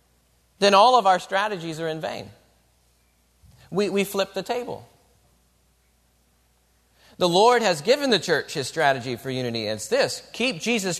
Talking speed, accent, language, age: 145 wpm, American, English, 40-59